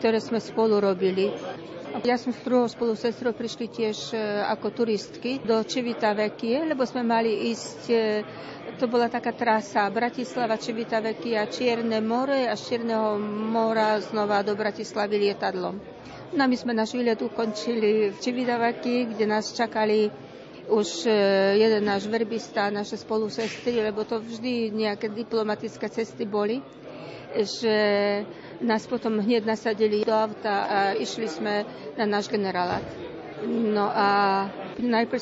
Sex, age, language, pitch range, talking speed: female, 50-69, Slovak, 210-235 Hz, 130 wpm